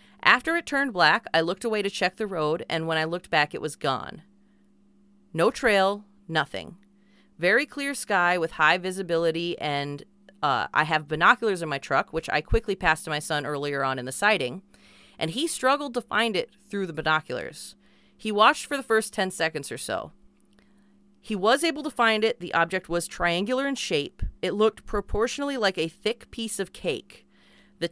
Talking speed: 190 wpm